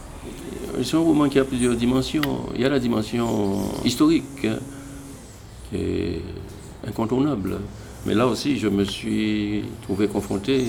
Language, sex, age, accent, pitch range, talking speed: French, male, 60-79, French, 95-120 Hz, 140 wpm